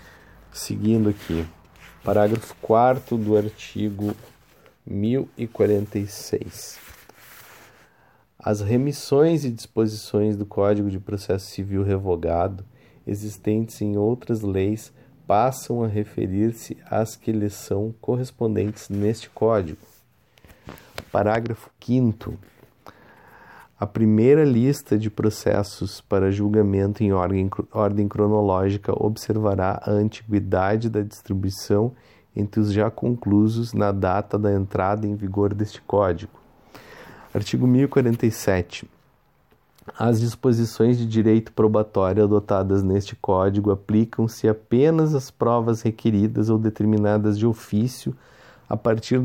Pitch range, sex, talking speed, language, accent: 100-115 Hz, male, 100 wpm, Portuguese, Brazilian